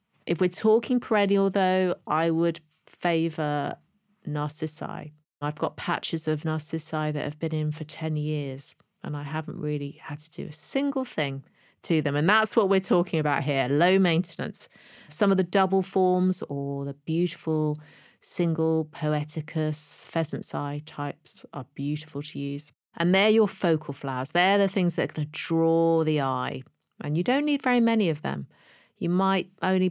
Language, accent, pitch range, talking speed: English, British, 150-195 Hz, 170 wpm